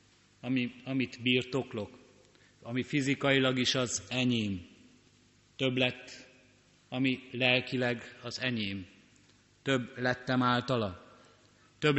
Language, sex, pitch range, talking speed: Hungarian, male, 110-125 Hz, 85 wpm